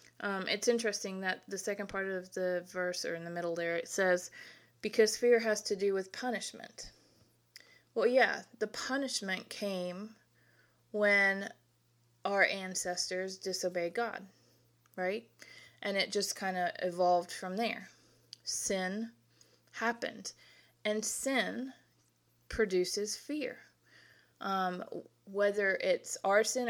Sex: female